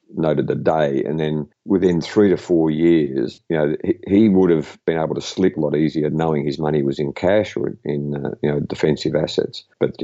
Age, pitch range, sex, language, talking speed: 50-69, 75-85 Hz, male, English, 225 wpm